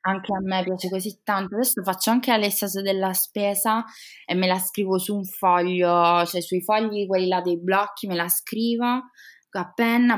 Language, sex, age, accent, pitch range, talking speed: Italian, female, 20-39, native, 170-215 Hz, 185 wpm